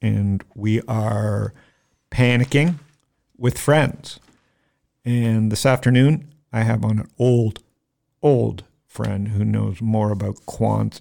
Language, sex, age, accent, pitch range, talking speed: English, male, 50-69, American, 105-125 Hz, 115 wpm